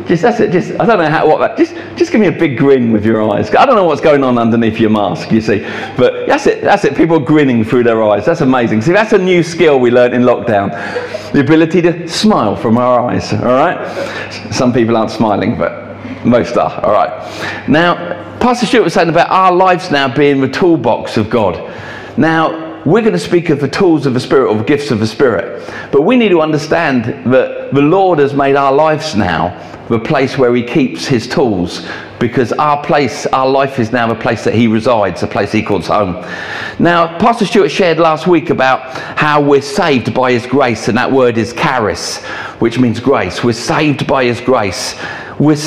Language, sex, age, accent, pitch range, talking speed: English, male, 50-69, British, 115-160 Hz, 215 wpm